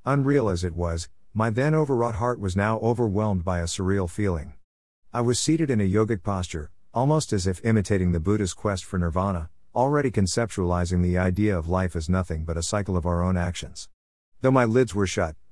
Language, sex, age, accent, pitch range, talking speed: English, male, 50-69, American, 85-115 Hz, 195 wpm